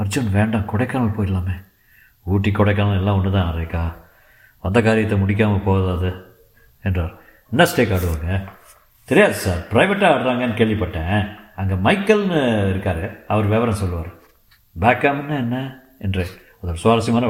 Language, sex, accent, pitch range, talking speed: Tamil, male, native, 95-120 Hz, 120 wpm